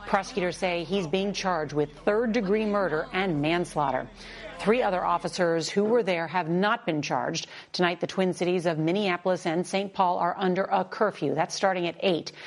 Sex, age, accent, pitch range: female, 40-59, American, 165-195 Hz